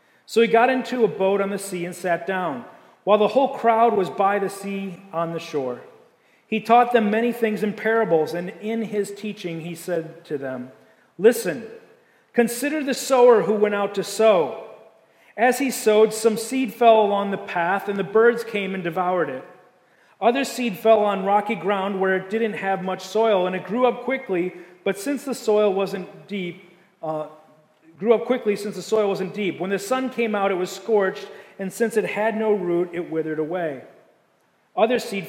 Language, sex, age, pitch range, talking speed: English, male, 40-59, 175-220 Hz, 195 wpm